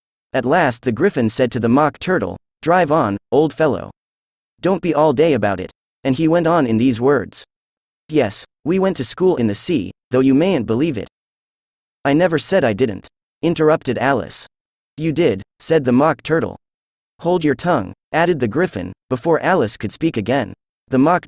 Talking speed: 185 wpm